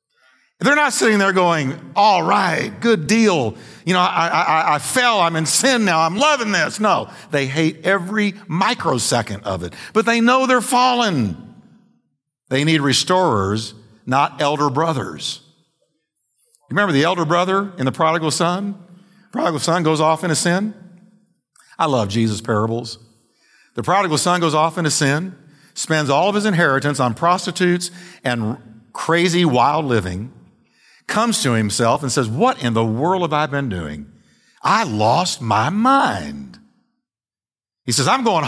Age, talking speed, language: 50-69, 155 wpm, English